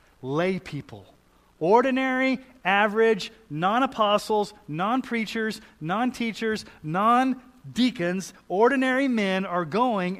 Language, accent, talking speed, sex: English, American, 70 wpm, male